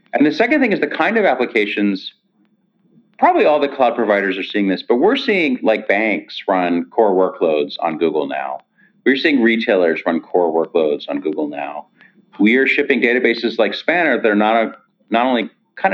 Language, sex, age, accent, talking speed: English, male, 40-59, American, 190 wpm